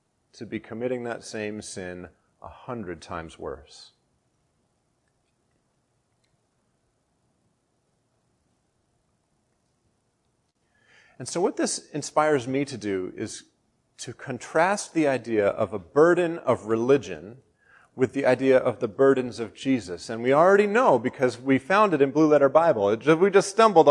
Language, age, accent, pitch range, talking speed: English, 40-59, American, 105-160 Hz, 130 wpm